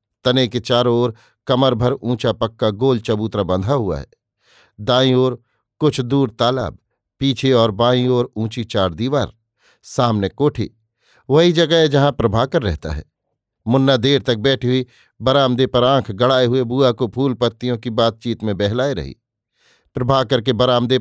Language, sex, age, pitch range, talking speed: Hindi, male, 50-69, 110-140 Hz, 160 wpm